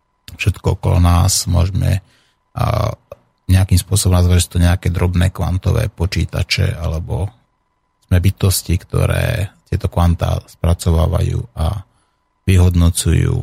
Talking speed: 100 wpm